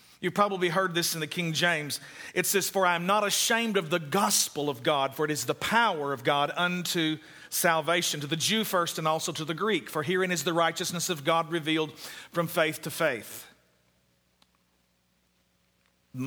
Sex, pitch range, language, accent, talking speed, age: male, 160-205 Hz, English, American, 190 wpm, 50-69